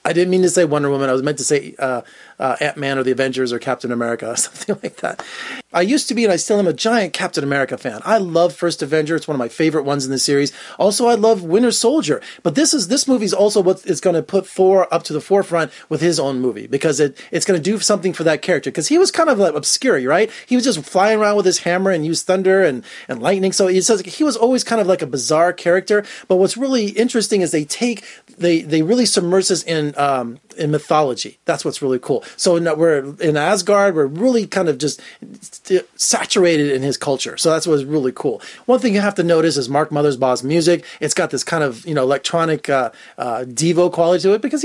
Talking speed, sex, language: 245 wpm, male, English